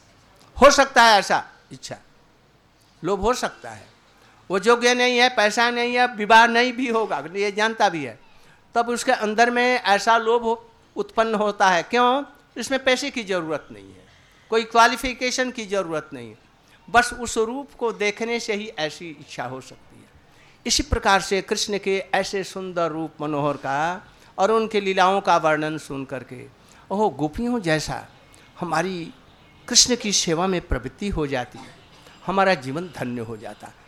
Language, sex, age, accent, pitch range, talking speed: Hindi, male, 60-79, native, 150-230 Hz, 165 wpm